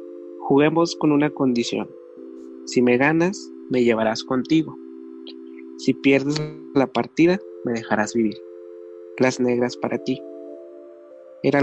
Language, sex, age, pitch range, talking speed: Spanish, male, 20-39, 90-135 Hz, 115 wpm